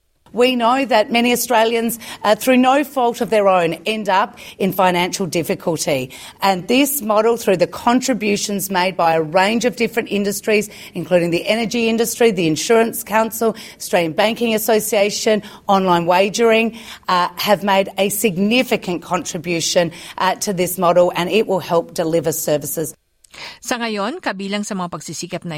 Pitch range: 165-225 Hz